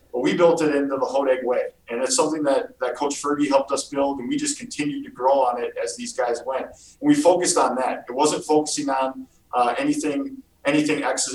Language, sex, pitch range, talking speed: English, male, 125-155 Hz, 235 wpm